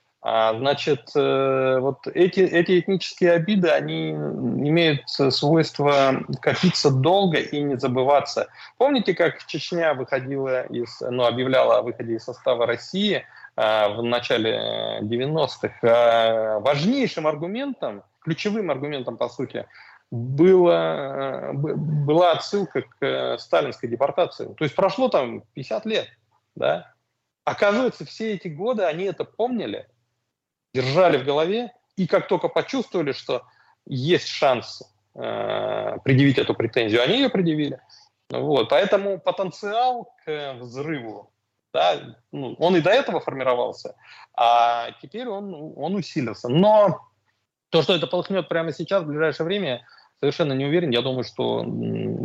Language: Russian